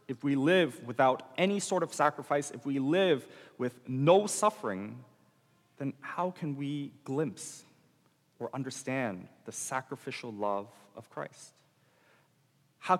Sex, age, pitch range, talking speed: male, 40-59, 115-150 Hz, 125 wpm